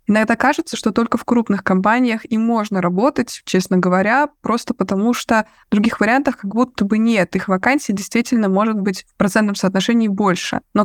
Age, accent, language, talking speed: 20-39, native, Russian, 175 wpm